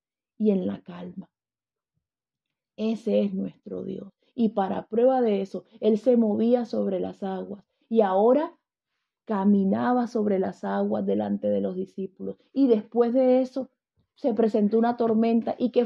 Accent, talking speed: Venezuelan, 150 wpm